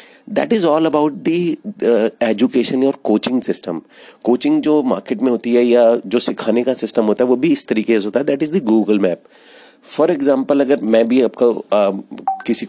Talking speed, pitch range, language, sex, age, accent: 195 wpm, 110-140 Hz, Hindi, male, 30-49, native